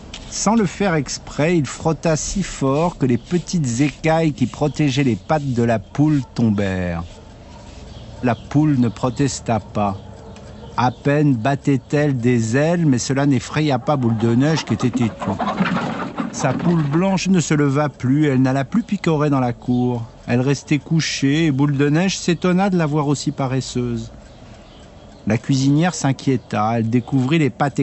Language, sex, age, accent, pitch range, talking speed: French, male, 50-69, French, 115-150 Hz, 160 wpm